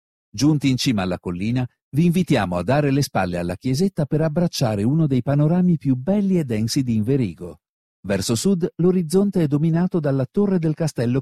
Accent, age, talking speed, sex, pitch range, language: native, 50-69, 175 wpm, male, 110-155 Hz, Italian